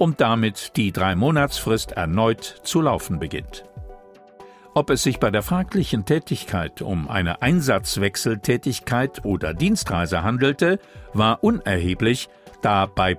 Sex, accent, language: male, German, German